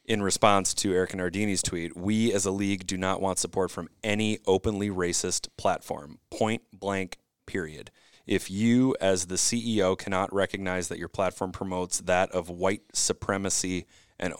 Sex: male